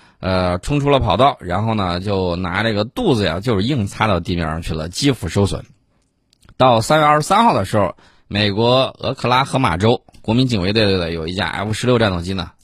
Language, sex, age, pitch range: Chinese, male, 20-39, 95-130 Hz